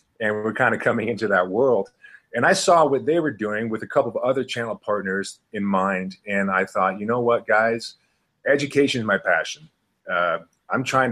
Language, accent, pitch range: English, American, 100-135 Hz